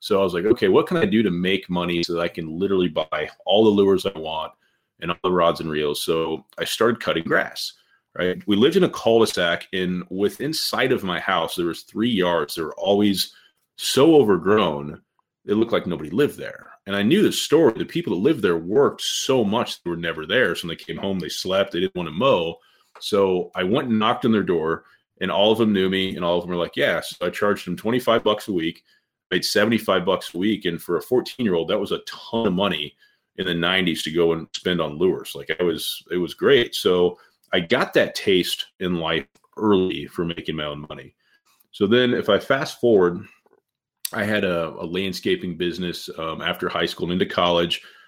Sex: male